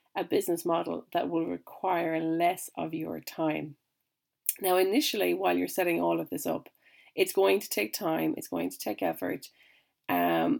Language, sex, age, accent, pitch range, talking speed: English, female, 30-49, Irish, 155-200 Hz, 165 wpm